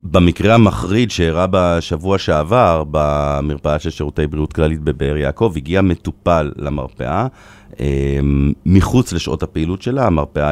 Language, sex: Hebrew, male